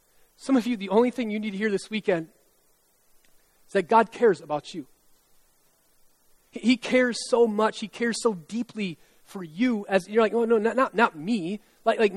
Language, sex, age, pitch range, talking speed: English, male, 30-49, 205-245 Hz, 190 wpm